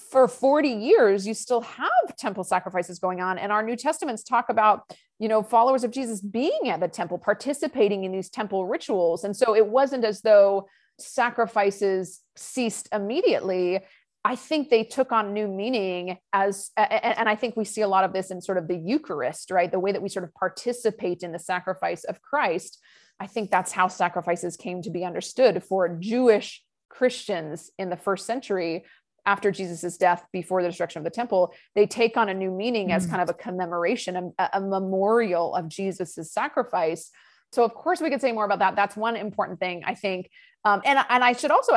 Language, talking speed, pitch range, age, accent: English, 195 wpm, 185-235 Hz, 30-49, American